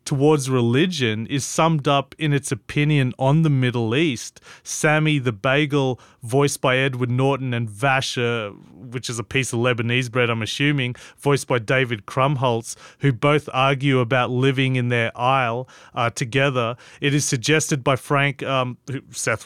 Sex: male